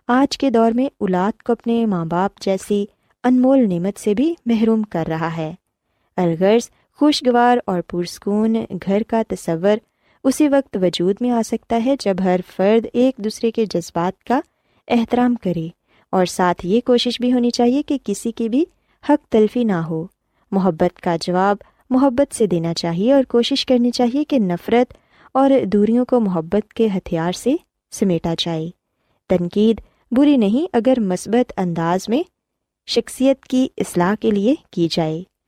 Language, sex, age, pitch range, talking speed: Urdu, female, 20-39, 185-245 Hz, 155 wpm